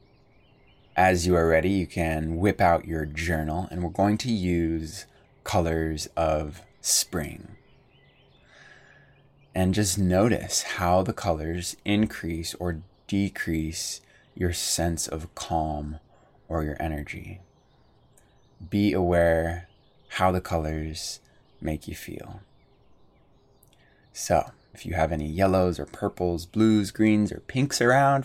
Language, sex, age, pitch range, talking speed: English, male, 20-39, 80-105 Hz, 115 wpm